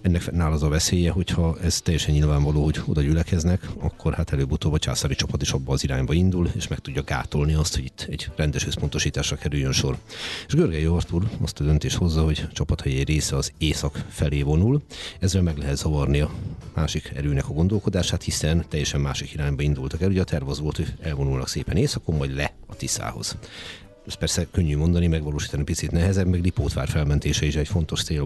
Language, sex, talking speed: Hungarian, male, 190 wpm